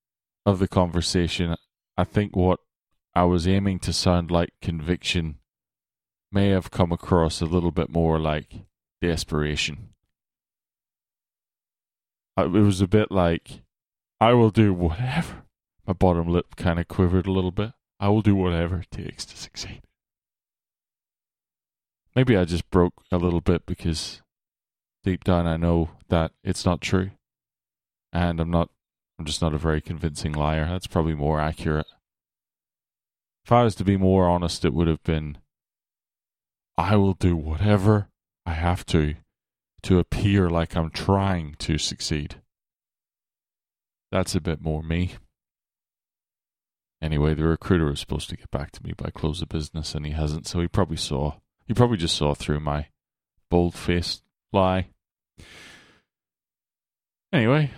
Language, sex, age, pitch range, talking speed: English, male, 20-39, 80-95 Hz, 140 wpm